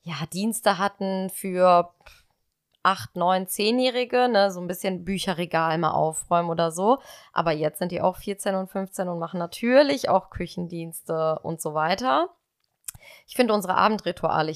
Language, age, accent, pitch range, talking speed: German, 20-39, German, 175-215 Hz, 150 wpm